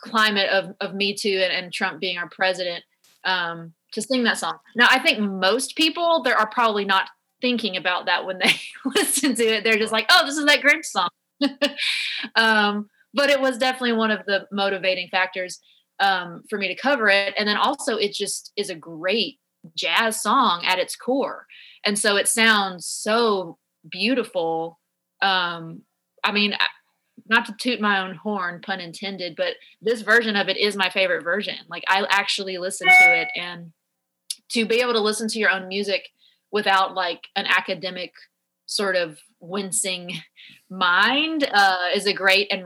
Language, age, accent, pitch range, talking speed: English, 30-49, American, 185-240 Hz, 180 wpm